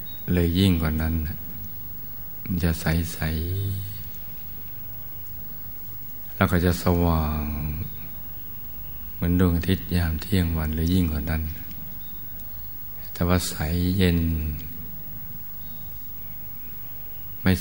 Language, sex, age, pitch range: Thai, male, 60-79, 80-90 Hz